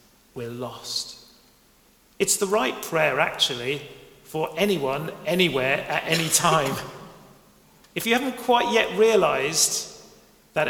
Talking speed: 110 wpm